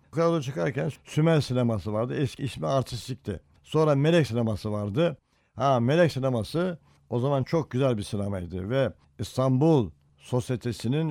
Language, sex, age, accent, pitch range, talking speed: Turkish, male, 60-79, native, 115-150 Hz, 135 wpm